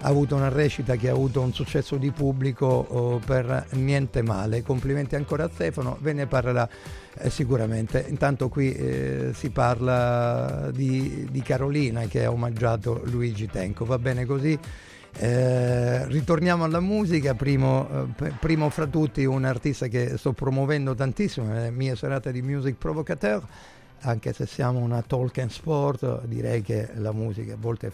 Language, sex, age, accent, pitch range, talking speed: Italian, male, 50-69, native, 115-140 Hz, 155 wpm